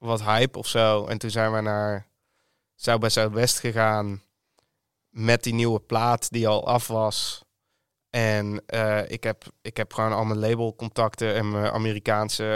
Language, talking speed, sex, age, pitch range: English, 155 wpm, male, 20-39, 110-120 Hz